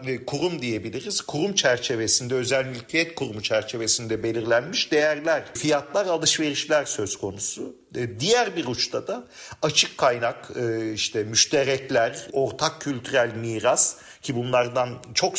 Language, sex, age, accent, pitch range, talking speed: Turkish, male, 50-69, native, 120-170 Hz, 110 wpm